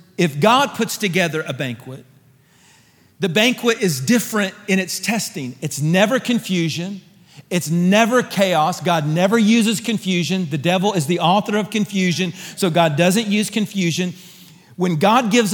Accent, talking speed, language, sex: American, 145 wpm, English, male